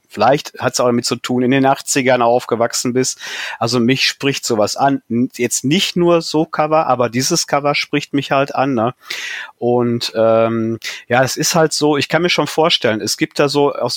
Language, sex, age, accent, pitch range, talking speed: German, male, 30-49, German, 120-145 Hz, 200 wpm